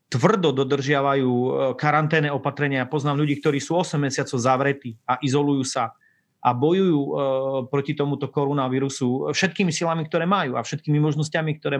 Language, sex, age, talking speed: Slovak, male, 30-49, 135 wpm